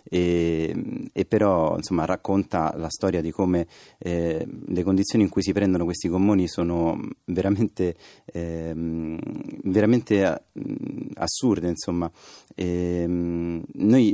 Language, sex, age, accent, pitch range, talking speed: Italian, male, 30-49, native, 85-100 Hz, 105 wpm